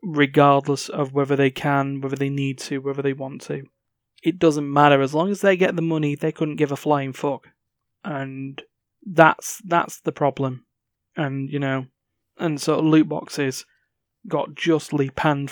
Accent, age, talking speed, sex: British, 20-39, 170 wpm, male